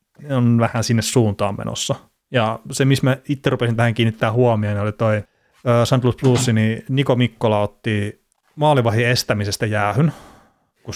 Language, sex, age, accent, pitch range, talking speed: Finnish, male, 30-49, native, 105-125 Hz, 150 wpm